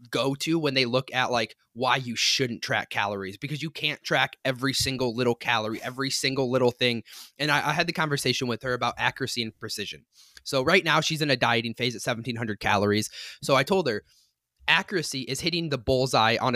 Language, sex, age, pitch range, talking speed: English, male, 20-39, 115-145 Hz, 205 wpm